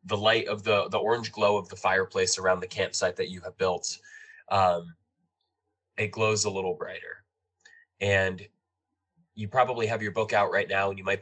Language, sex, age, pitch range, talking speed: English, male, 20-39, 95-115 Hz, 185 wpm